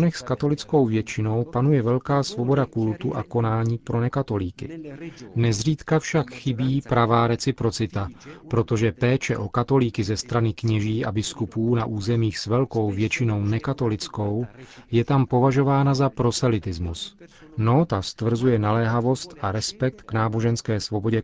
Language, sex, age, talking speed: Czech, male, 40-59, 125 wpm